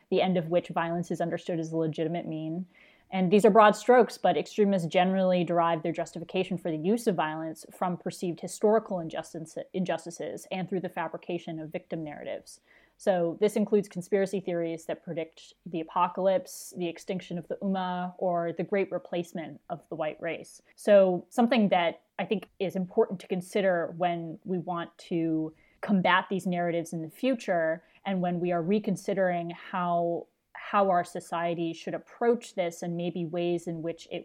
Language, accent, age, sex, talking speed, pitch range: English, American, 20-39, female, 170 wpm, 170-195 Hz